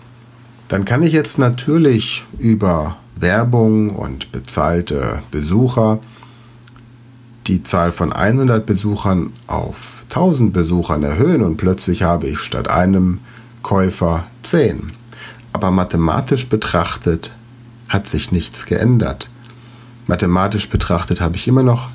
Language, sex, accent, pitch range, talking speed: German, male, German, 90-120 Hz, 110 wpm